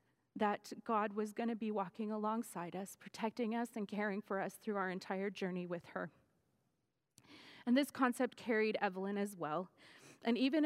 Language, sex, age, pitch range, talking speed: English, female, 30-49, 220-280 Hz, 165 wpm